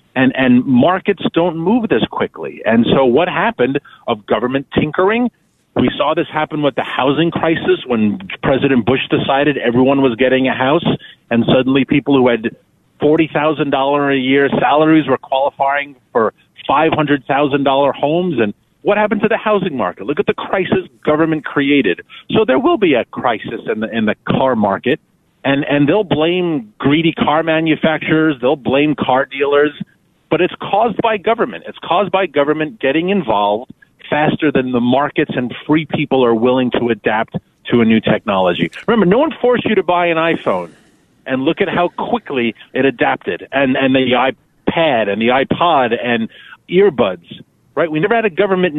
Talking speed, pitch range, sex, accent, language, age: 170 wpm, 130-175 Hz, male, American, English, 40-59